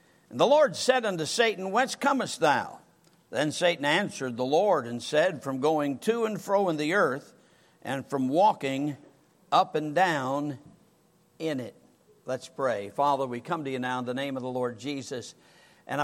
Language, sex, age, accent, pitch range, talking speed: English, male, 50-69, American, 135-170 Hz, 180 wpm